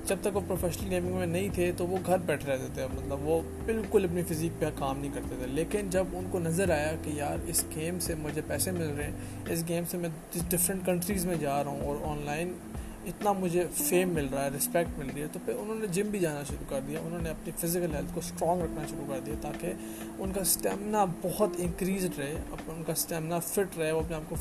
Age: 20-39